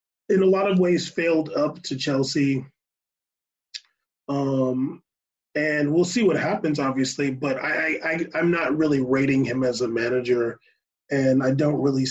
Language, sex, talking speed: English, male, 155 wpm